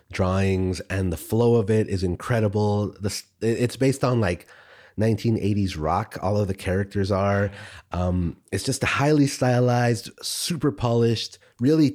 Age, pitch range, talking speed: 30-49, 95-115 Hz, 145 wpm